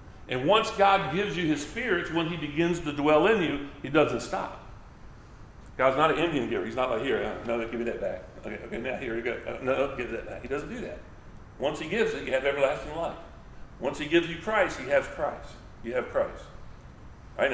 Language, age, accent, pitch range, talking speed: English, 50-69, American, 120-165 Hz, 220 wpm